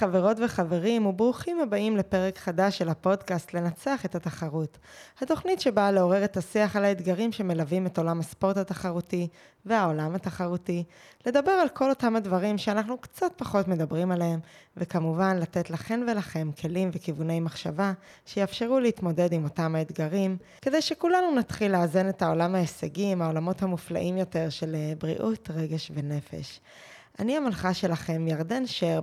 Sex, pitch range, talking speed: female, 170-225 Hz, 135 wpm